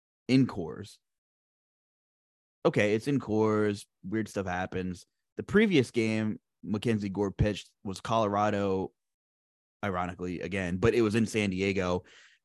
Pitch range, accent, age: 100-135 Hz, American, 20-39